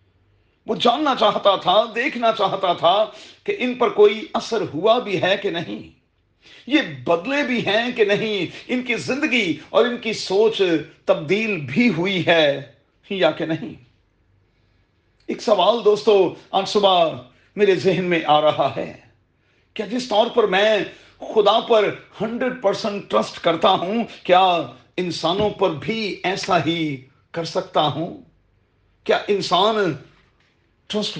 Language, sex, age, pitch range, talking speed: Urdu, male, 40-59, 160-220 Hz, 135 wpm